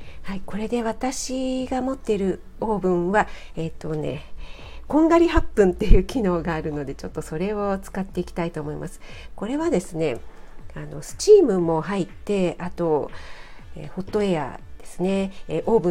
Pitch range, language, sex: 165-235 Hz, Japanese, female